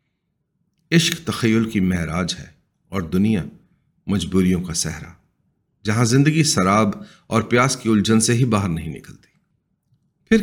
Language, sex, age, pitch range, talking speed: Urdu, male, 40-59, 105-155 Hz, 130 wpm